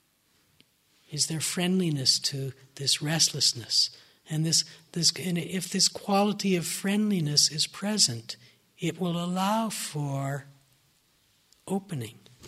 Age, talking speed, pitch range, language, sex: 60-79, 105 wpm, 150-180 Hz, English, male